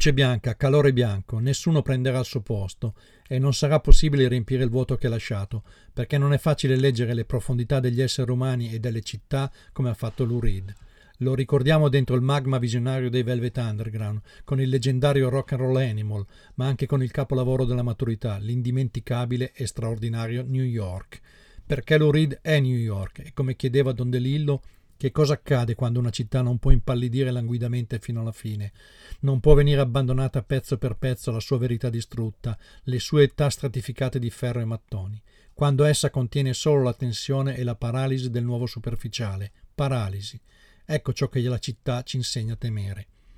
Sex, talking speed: male, 180 wpm